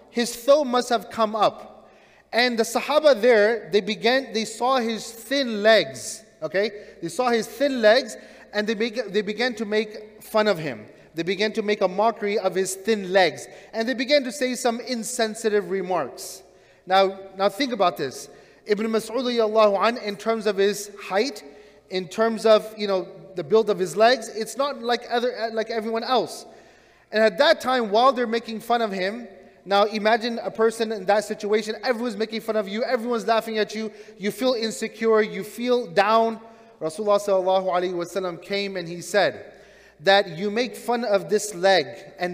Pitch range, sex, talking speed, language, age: 195-230 Hz, male, 175 wpm, English, 30-49